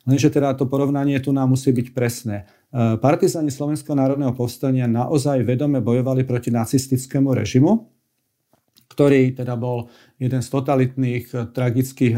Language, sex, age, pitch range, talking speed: Slovak, male, 40-59, 125-135 Hz, 130 wpm